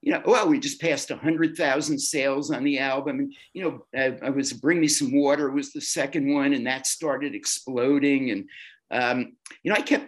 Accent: American